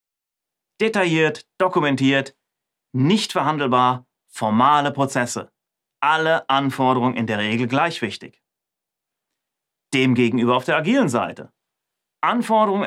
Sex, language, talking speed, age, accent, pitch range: male, German, 90 wpm, 30-49, German, 125-160 Hz